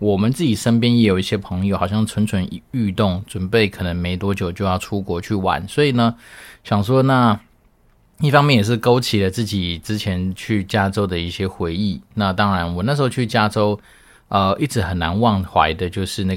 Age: 20-39